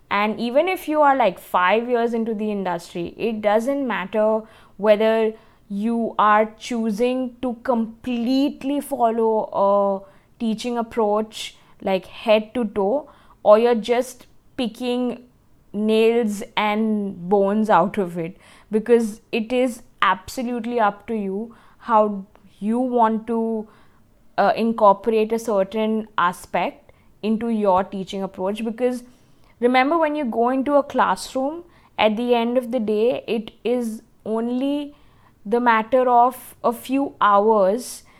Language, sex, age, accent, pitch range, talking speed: English, female, 20-39, Indian, 210-245 Hz, 125 wpm